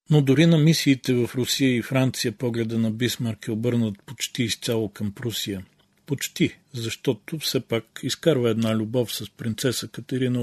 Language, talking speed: Bulgarian, 155 wpm